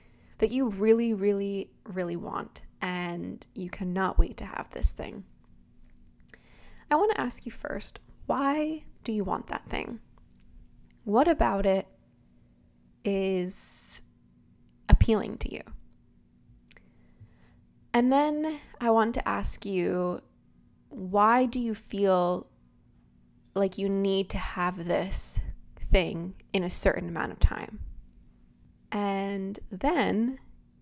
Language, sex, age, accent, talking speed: English, female, 20-39, American, 115 wpm